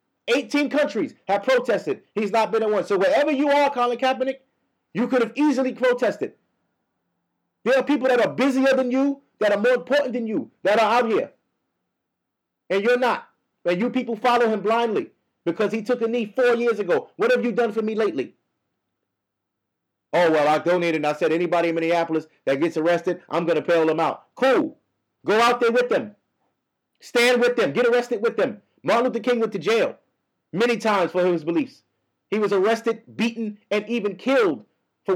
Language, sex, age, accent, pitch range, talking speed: English, male, 30-49, American, 190-250 Hz, 195 wpm